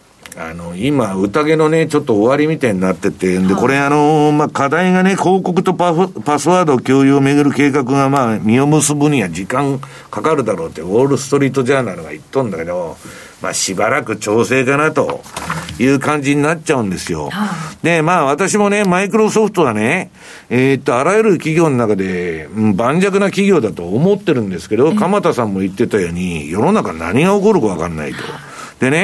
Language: Japanese